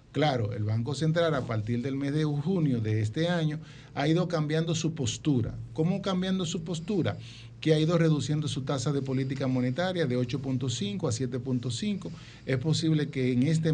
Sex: male